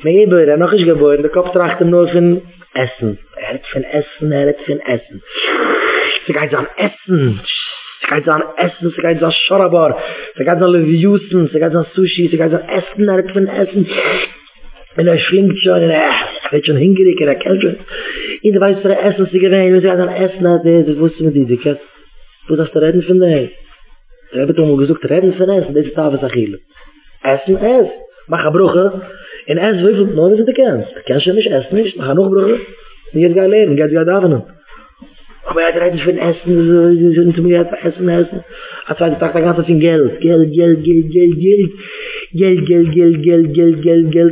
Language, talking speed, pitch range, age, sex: English, 175 wpm, 155-185 Hz, 30-49, male